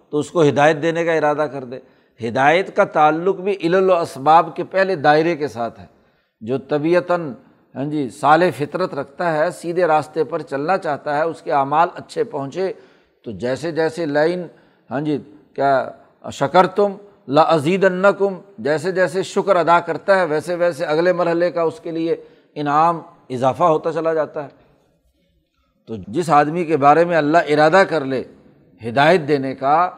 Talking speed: 160 wpm